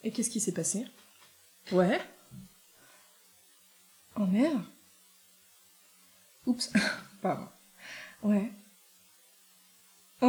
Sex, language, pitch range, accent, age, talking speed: female, French, 190-245 Hz, French, 20-39, 70 wpm